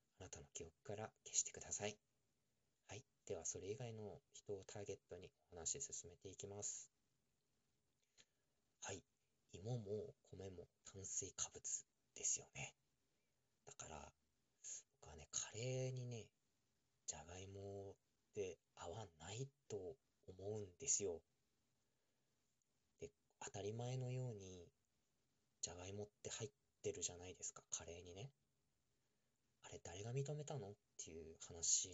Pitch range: 95-135 Hz